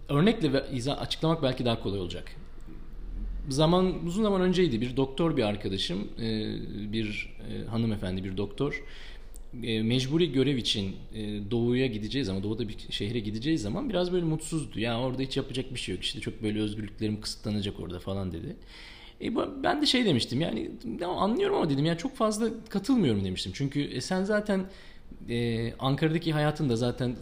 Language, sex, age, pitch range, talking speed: Turkish, male, 40-59, 110-170 Hz, 150 wpm